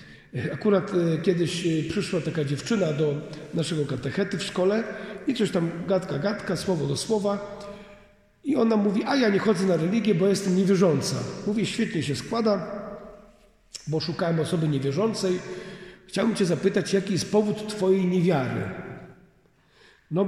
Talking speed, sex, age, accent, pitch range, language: 140 wpm, male, 50-69, native, 155-200 Hz, Polish